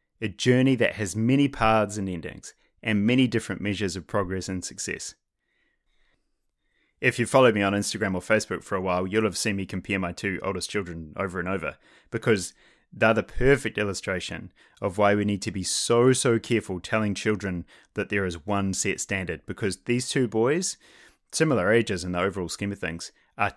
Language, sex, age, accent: English, male, 20-39, Australian